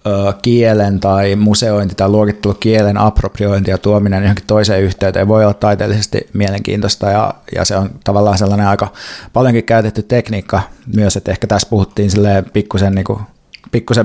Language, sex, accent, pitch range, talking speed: Finnish, male, native, 100-120 Hz, 135 wpm